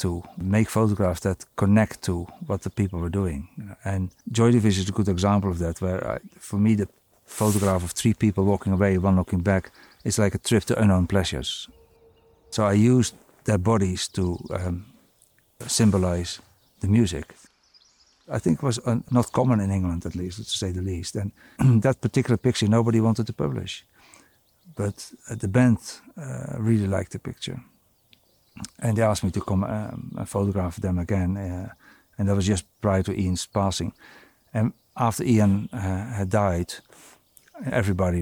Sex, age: male, 50-69